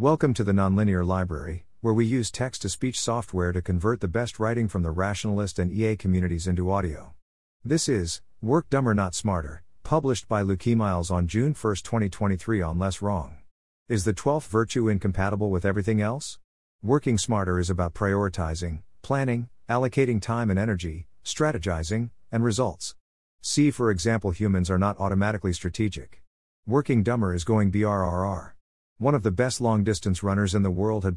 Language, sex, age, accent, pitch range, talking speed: English, male, 50-69, American, 90-115 Hz, 165 wpm